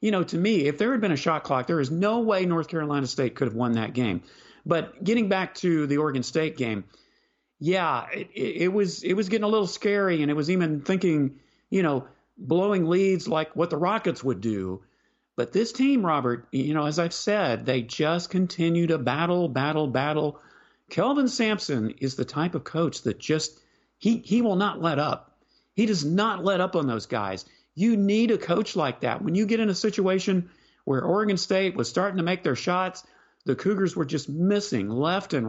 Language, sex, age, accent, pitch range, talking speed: English, male, 40-59, American, 135-190 Hz, 210 wpm